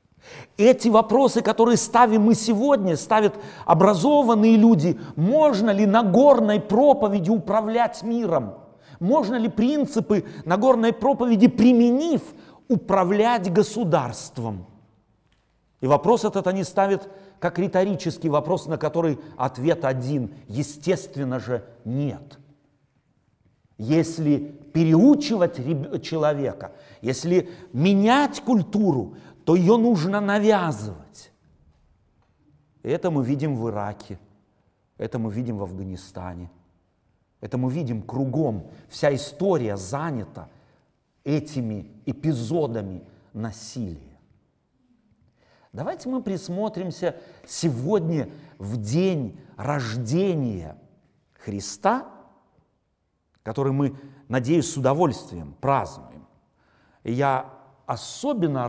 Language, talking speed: Russian, 85 wpm